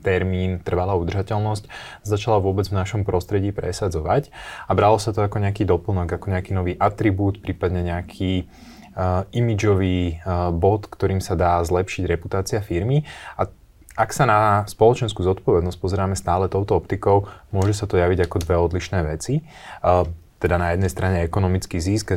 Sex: male